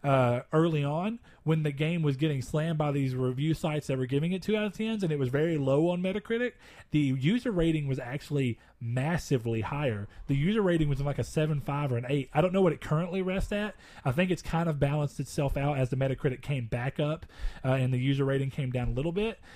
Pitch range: 135-185 Hz